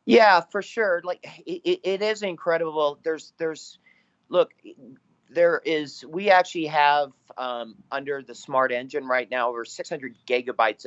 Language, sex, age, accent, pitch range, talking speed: English, male, 40-59, American, 130-170 Hz, 145 wpm